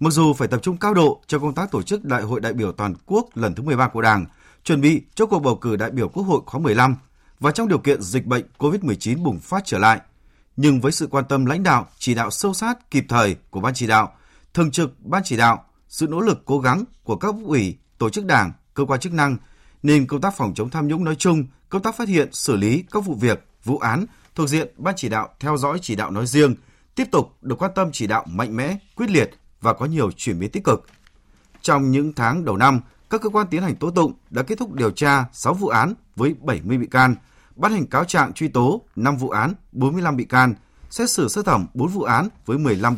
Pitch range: 120-170 Hz